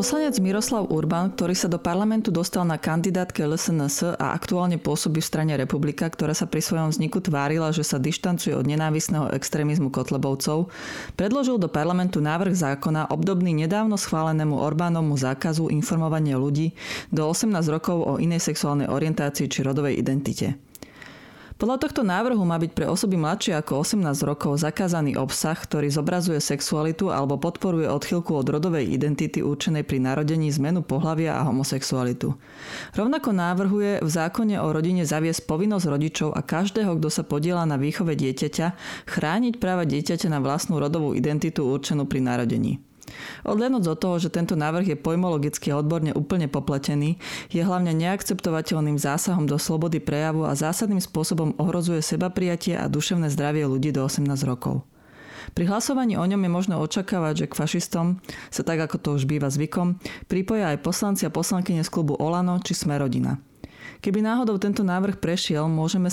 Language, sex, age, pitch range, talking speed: Slovak, female, 30-49, 150-185 Hz, 155 wpm